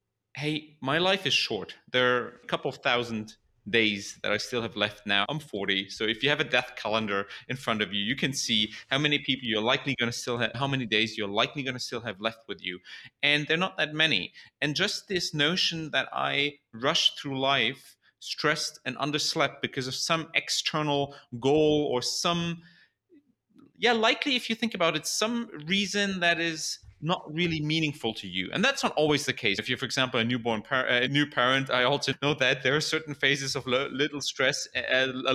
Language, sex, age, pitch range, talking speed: English, male, 30-49, 120-155 Hz, 210 wpm